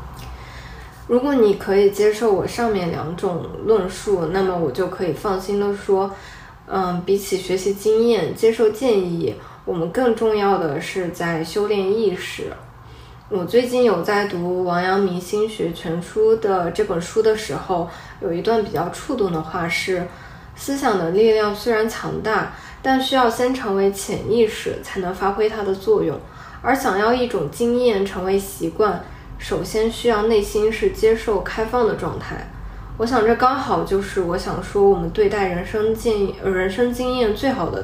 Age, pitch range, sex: 20-39, 180-230 Hz, female